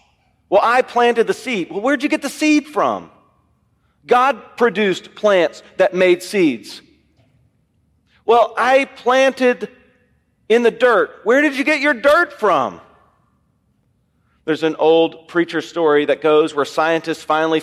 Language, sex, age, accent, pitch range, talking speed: English, male, 40-59, American, 180-235 Hz, 140 wpm